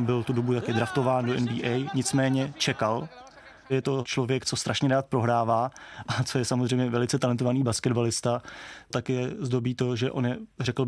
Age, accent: 20-39, native